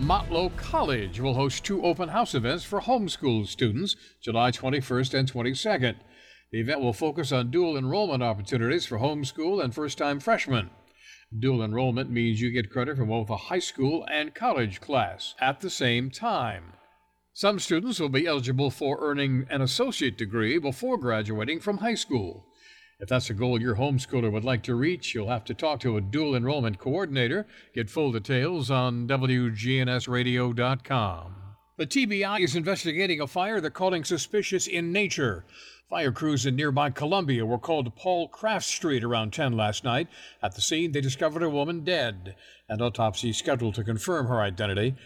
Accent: American